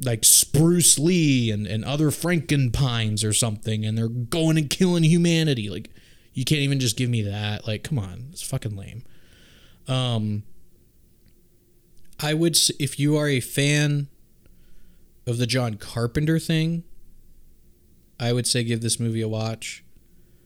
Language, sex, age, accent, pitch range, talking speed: English, male, 20-39, American, 110-150 Hz, 150 wpm